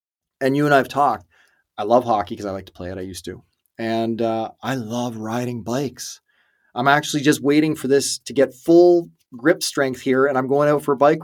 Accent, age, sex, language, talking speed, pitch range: American, 30-49, male, English, 225 wpm, 110-140 Hz